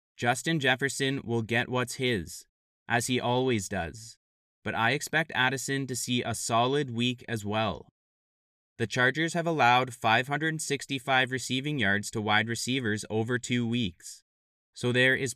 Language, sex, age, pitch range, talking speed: English, male, 20-39, 110-135 Hz, 145 wpm